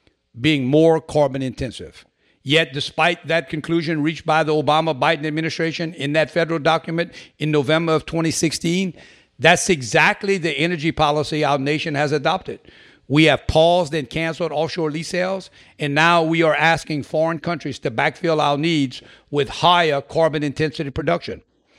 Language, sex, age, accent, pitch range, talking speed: English, male, 60-79, American, 145-175 Hz, 145 wpm